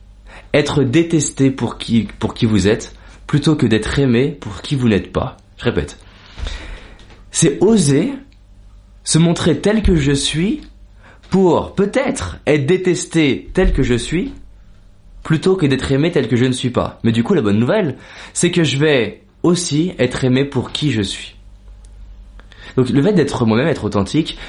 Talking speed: 170 wpm